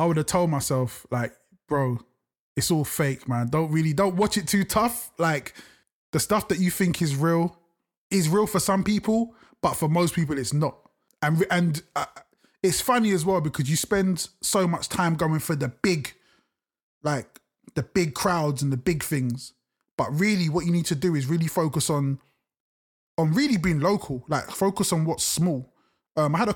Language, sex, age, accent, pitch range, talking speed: English, male, 20-39, British, 140-175 Hz, 195 wpm